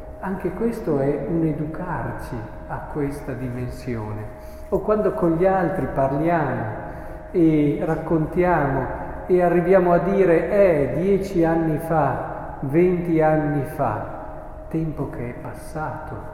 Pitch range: 135-170 Hz